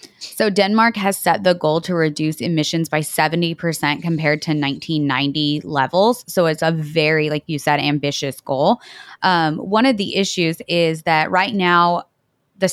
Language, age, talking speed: English, 20-39, 160 wpm